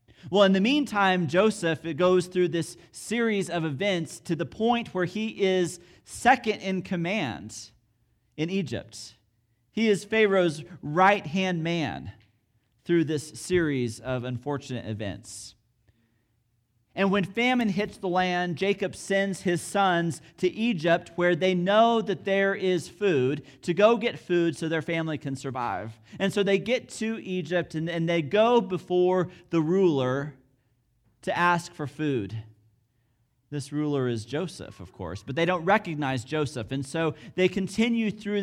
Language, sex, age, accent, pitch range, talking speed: English, male, 40-59, American, 125-180 Hz, 145 wpm